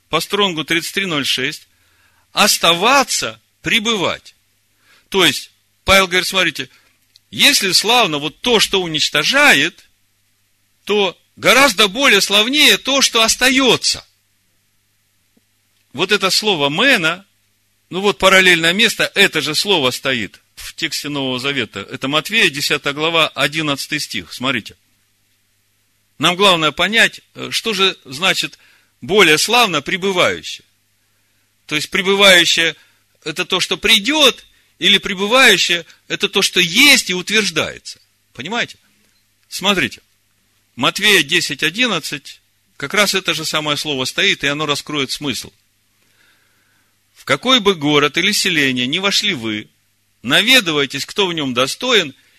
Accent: native